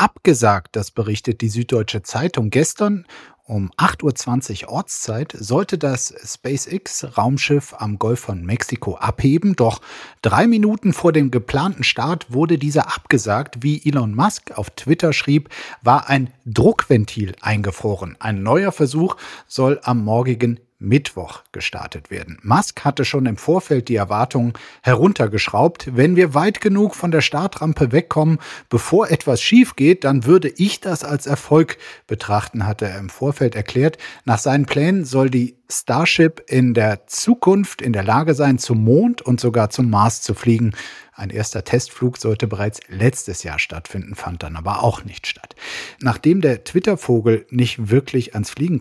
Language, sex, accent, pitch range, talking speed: German, male, German, 110-150 Hz, 150 wpm